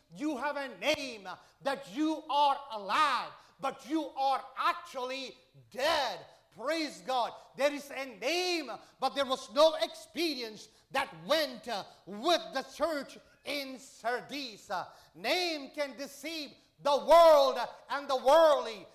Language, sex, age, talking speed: English, male, 40-59, 125 wpm